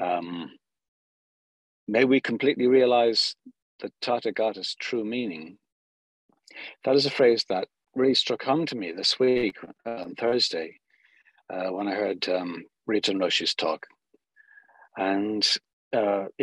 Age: 60-79